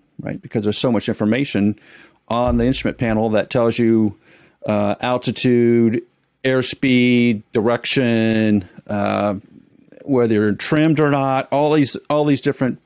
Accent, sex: American, male